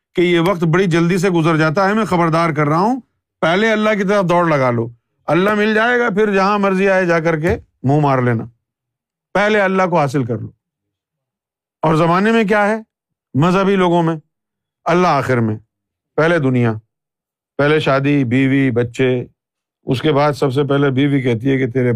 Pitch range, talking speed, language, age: 130-175 Hz, 190 wpm, Urdu, 50-69